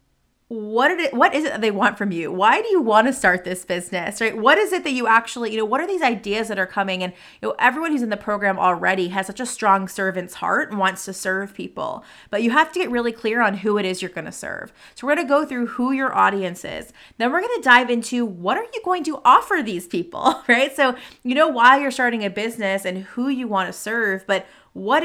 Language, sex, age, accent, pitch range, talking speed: English, female, 30-49, American, 195-245 Hz, 265 wpm